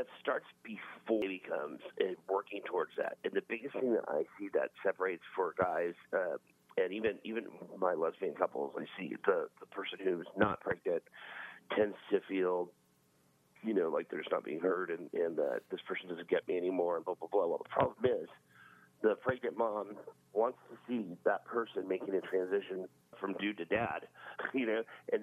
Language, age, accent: English, 40-59, American